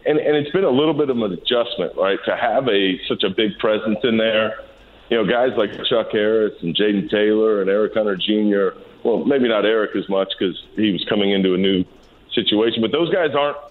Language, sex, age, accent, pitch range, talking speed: English, male, 40-59, American, 100-130 Hz, 225 wpm